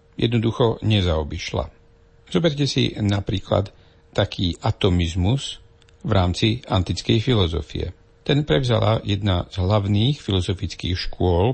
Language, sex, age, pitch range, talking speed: Slovak, male, 50-69, 90-115 Hz, 95 wpm